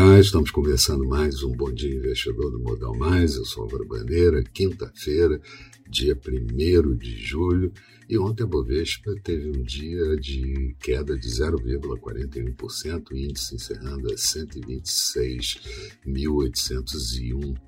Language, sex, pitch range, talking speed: Portuguese, male, 65-85 Hz, 115 wpm